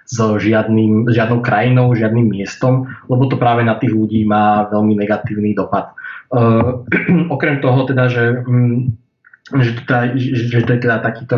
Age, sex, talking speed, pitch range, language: 20-39, male, 150 wpm, 110-125 Hz, Slovak